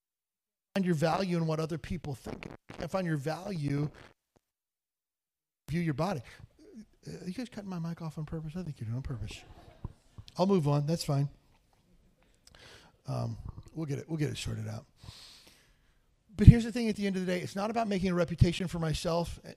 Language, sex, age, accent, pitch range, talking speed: English, male, 40-59, American, 145-195 Hz, 195 wpm